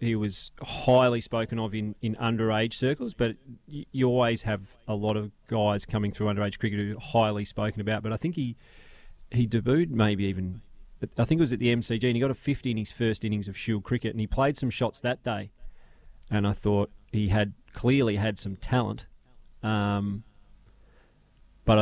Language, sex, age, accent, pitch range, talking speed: English, male, 30-49, Australian, 100-120 Hz, 195 wpm